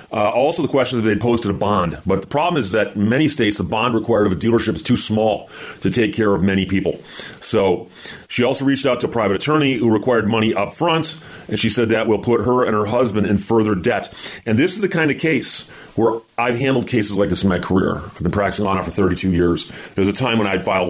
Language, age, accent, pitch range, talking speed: English, 30-49, American, 95-120 Hz, 260 wpm